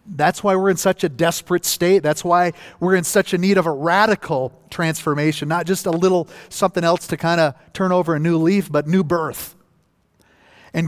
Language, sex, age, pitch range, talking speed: English, male, 40-59, 150-190 Hz, 205 wpm